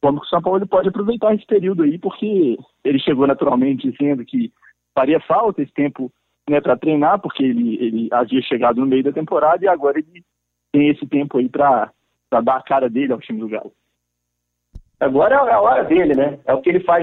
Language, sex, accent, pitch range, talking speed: Portuguese, male, Brazilian, 135-225 Hz, 210 wpm